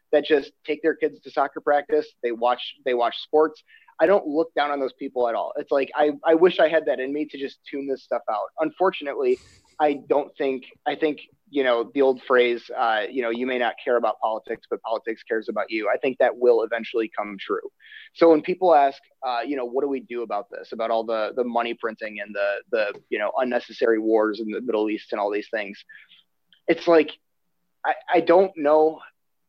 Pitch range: 115-170 Hz